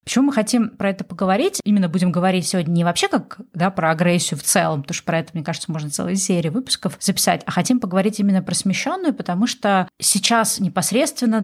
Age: 20-39